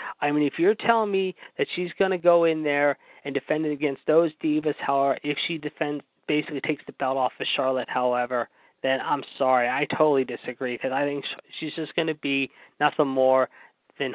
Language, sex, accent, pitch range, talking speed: English, male, American, 140-165 Hz, 200 wpm